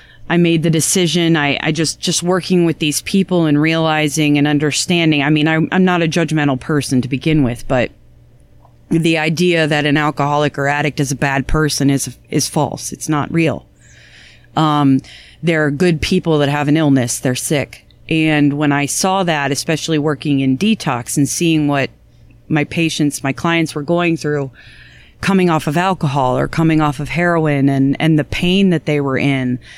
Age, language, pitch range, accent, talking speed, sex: 30-49, English, 145-170 Hz, American, 185 wpm, female